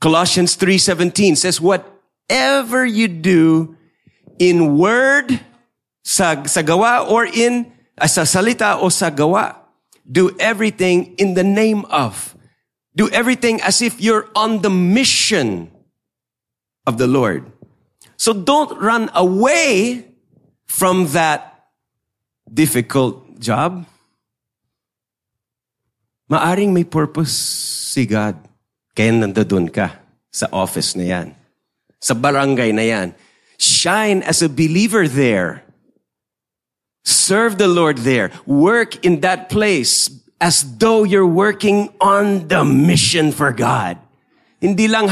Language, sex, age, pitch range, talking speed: English, male, 40-59, 145-210 Hz, 110 wpm